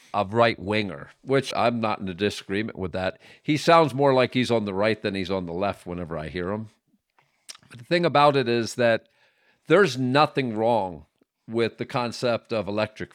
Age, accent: 50-69, American